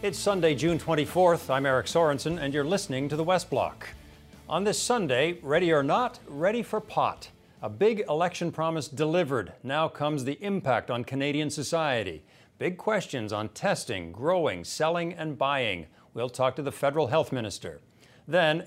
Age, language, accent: 50-69, English, American